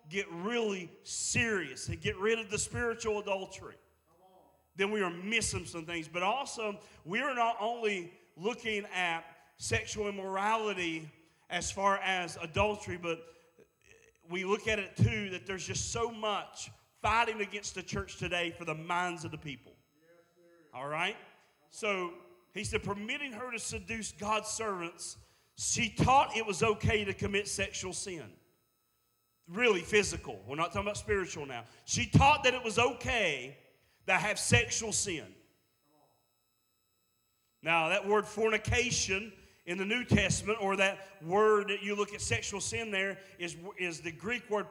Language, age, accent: English, 40-59, American